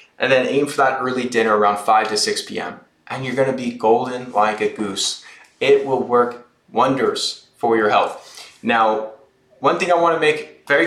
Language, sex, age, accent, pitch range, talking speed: English, male, 20-39, American, 130-170 Hz, 200 wpm